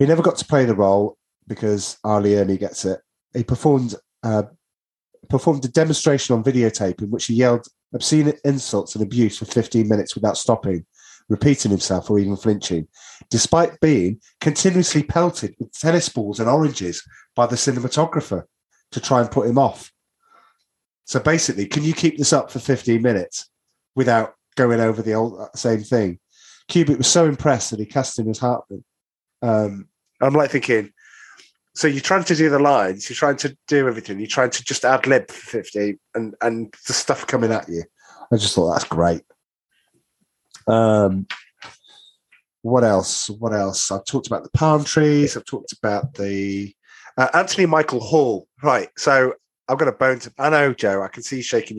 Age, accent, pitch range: 30-49, British, 105-145 Hz